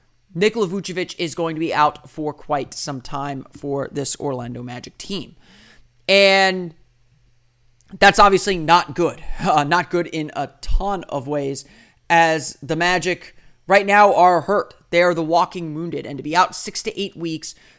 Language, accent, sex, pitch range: English, American, male, 155-190 Hz